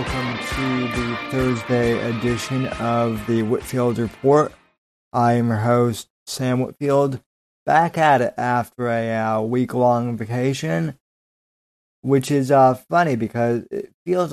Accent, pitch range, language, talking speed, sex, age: American, 115-130 Hz, English, 120 wpm, male, 20-39